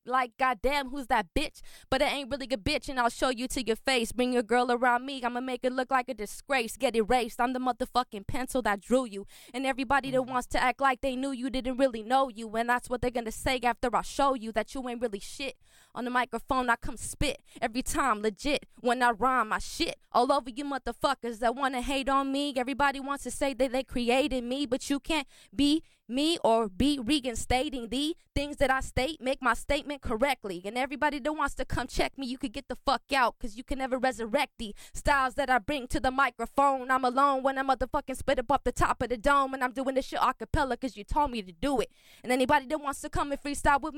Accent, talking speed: American, 245 wpm